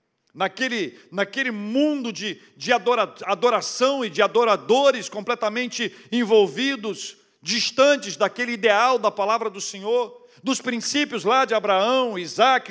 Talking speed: 115 wpm